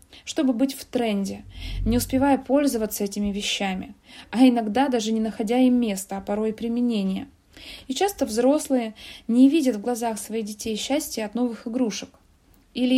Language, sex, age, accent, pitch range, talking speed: Russian, female, 20-39, native, 205-265 Hz, 155 wpm